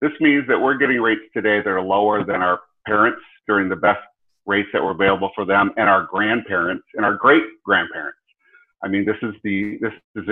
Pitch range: 100-120 Hz